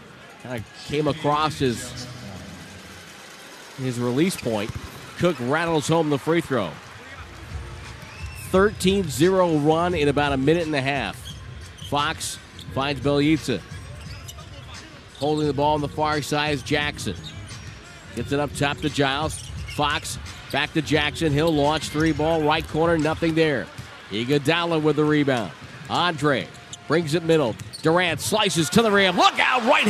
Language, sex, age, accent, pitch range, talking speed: English, male, 40-59, American, 130-165 Hz, 140 wpm